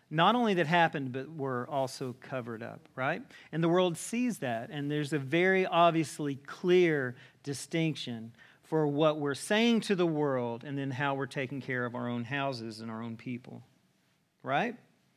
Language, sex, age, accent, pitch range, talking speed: English, male, 40-59, American, 130-175 Hz, 175 wpm